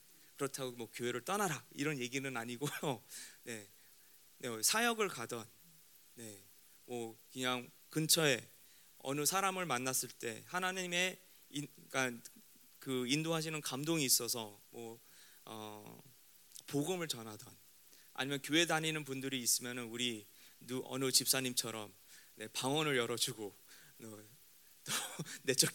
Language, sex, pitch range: Korean, male, 115-165 Hz